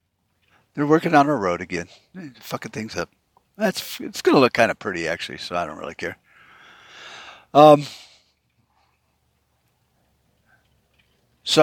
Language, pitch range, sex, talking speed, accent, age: English, 100-155 Hz, male, 130 wpm, American, 60-79